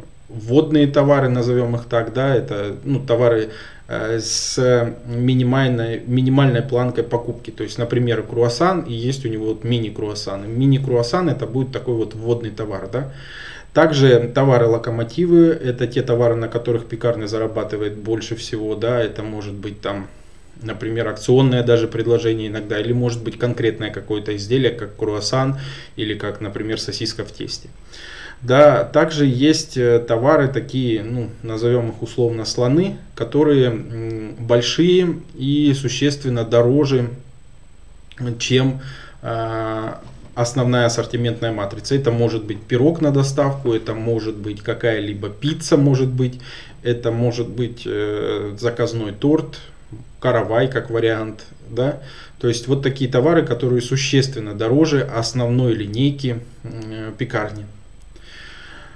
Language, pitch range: Russian, 110-130 Hz